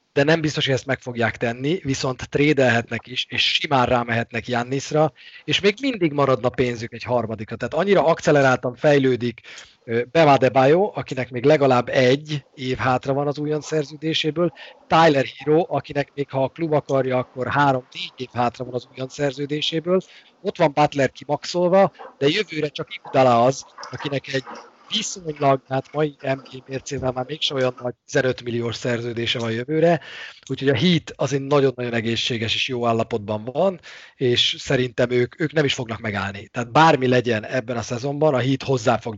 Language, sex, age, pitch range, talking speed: Hungarian, male, 30-49, 120-150 Hz, 160 wpm